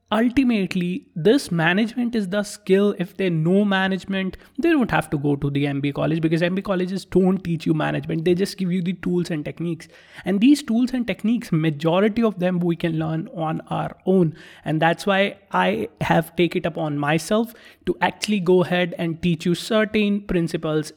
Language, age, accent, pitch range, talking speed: English, 20-39, Indian, 160-205 Hz, 190 wpm